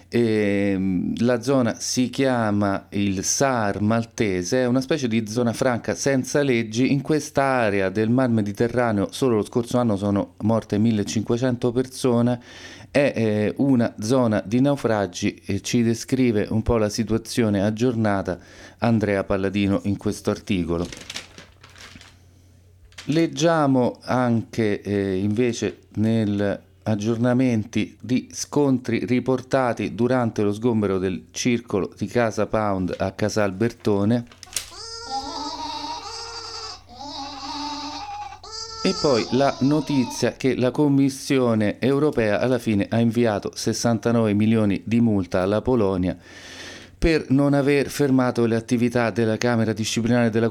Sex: male